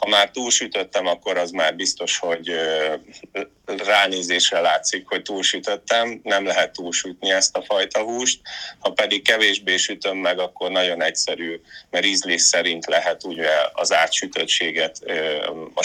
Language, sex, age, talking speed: Hungarian, male, 30-49, 130 wpm